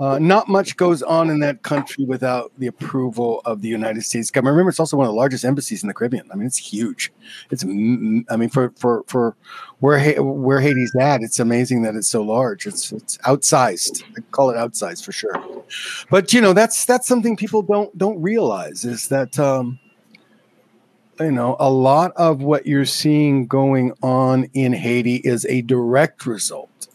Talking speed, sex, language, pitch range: 190 wpm, male, English, 125-170 Hz